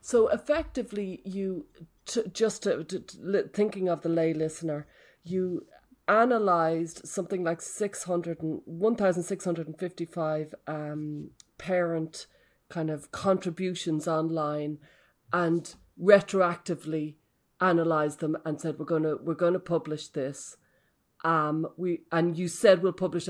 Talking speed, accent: 130 wpm, Irish